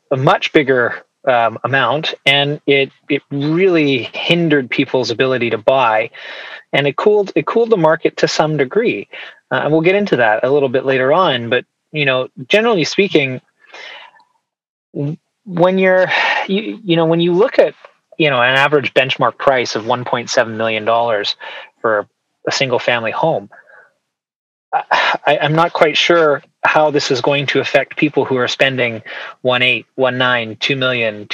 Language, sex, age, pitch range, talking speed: English, male, 30-49, 125-165 Hz, 160 wpm